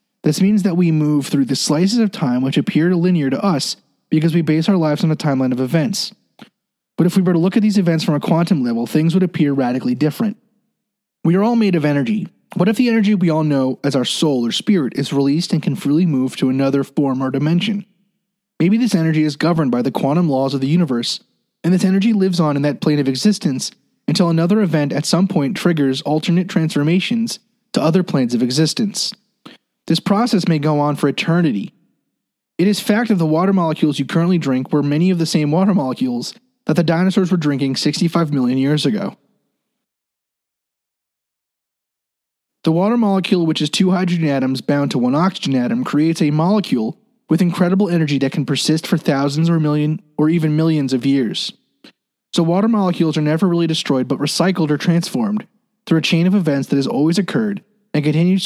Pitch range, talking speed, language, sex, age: 145-195 Hz, 200 wpm, English, male, 30-49